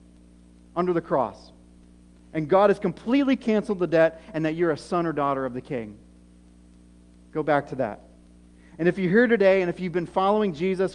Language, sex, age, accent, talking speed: English, male, 40-59, American, 190 wpm